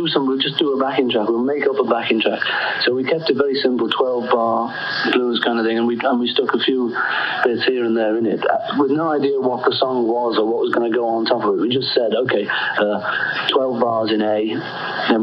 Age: 40-59